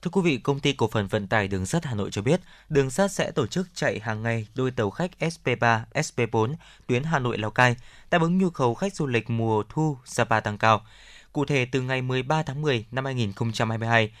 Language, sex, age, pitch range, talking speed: Vietnamese, male, 20-39, 115-155 Hz, 230 wpm